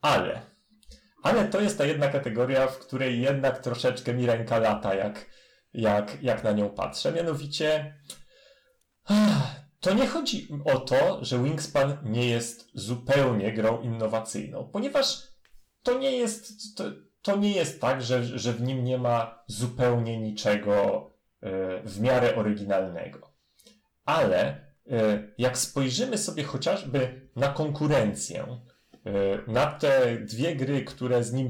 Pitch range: 115-175 Hz